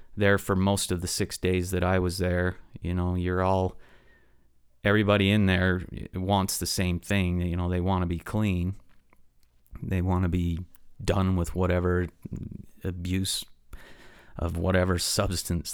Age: 30-49